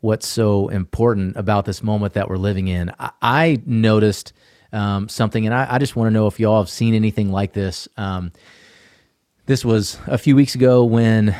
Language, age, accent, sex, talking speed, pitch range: English, 30-49, American, male, 190 wpm, 100-130 Hz